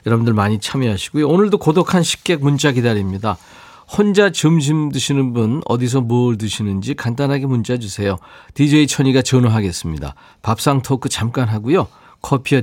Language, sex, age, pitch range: Korean, male, 40-59, 105-145 Hz